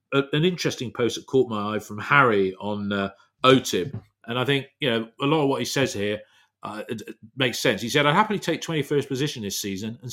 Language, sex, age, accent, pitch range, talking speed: English, male, 40-59, British, 110-135 Hz, 230 wpm